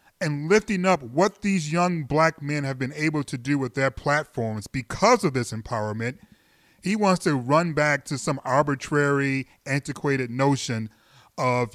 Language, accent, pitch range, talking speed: English, American, 130-170 Hz, 160 wpm